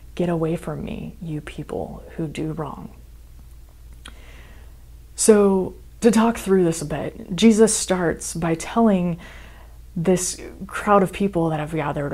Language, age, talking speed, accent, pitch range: English, 20-39, 135 wpm, American, 135-185 Hz